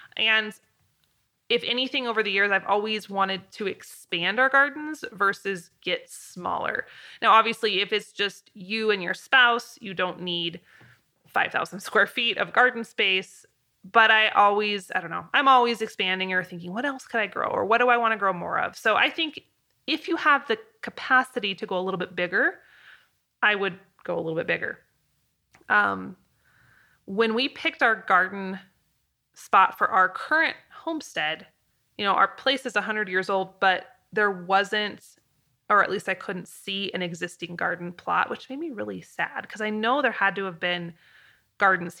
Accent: American